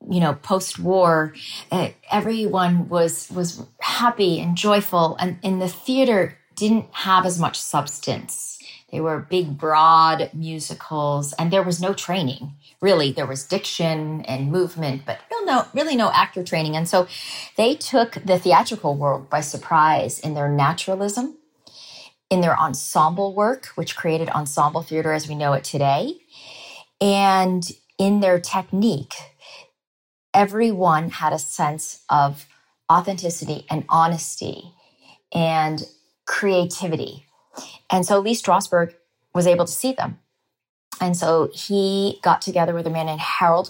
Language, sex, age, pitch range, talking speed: English, female, 40-59, 155-185 Hz, 135 wpm